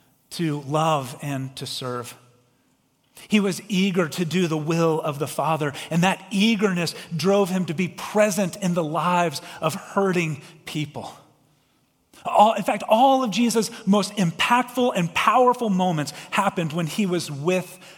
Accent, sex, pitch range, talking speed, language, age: American, male, 140-195 Hz, 145 wpm, English, 40-59